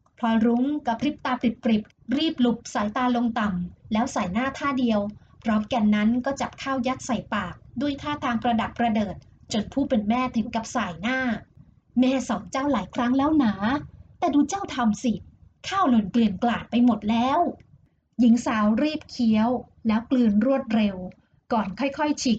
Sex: female